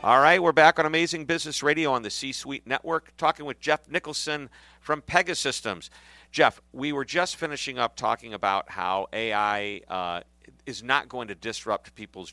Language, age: English, 50-69